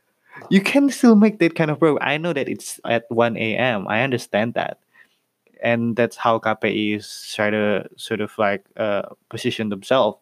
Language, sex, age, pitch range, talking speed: Indonesian, male, 20-39, 105-120 Hz, 180 wpm